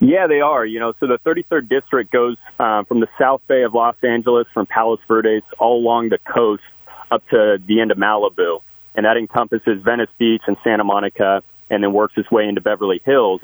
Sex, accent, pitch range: male, American, 105-130 Hz